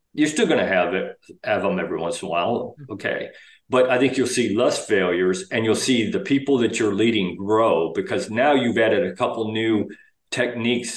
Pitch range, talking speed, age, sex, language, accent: 100-135 Hz, 210 wpm, 50-69, male, English, American